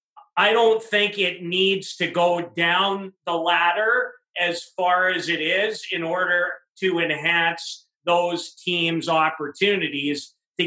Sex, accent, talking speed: male, American, 130 wpm